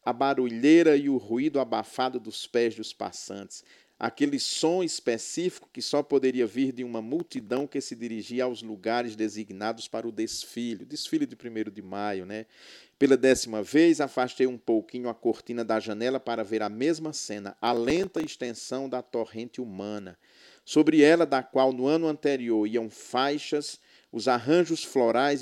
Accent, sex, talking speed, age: Brazilian, male, 160 wpm, 50-69